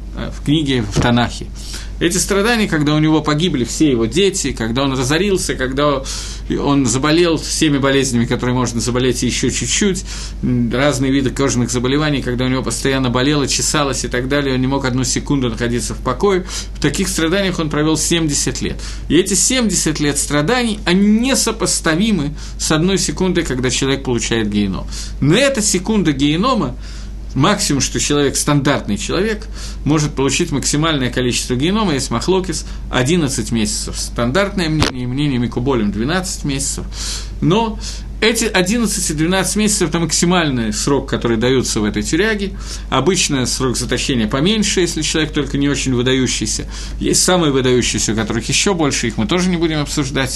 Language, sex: Russian, male